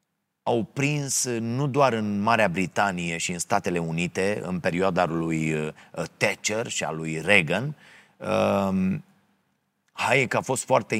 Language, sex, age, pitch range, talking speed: Romanian, male, 30-49, 110-165 Hz, 130 wpm